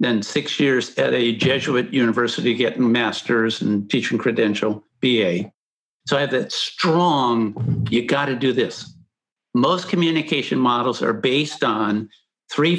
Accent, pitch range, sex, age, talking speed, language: American, 120-150 Hz, male, 60-79, 140 wpm, English